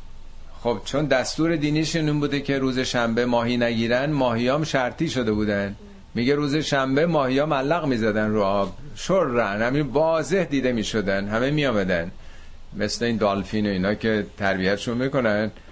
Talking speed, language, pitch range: 155 wpm, Persian, 100-130 Hz